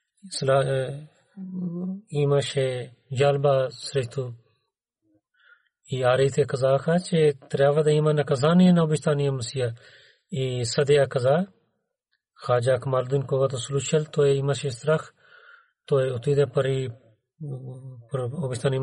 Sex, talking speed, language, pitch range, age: male, 100 wpm, Bulgarian, 130-160 Hz, 40-59